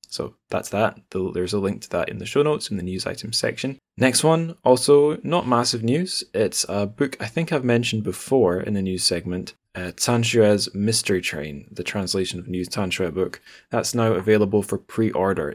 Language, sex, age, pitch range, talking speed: English, male, 10-29, 90-120 Hz, 195 wpm